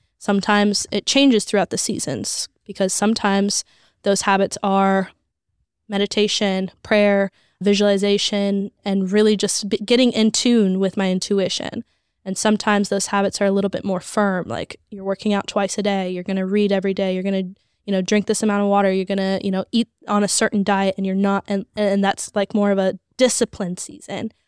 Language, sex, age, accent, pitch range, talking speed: English, female, 10-29, American, 195-220 Hz, 190 wpm